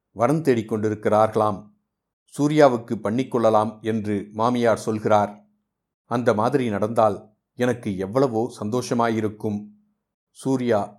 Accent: native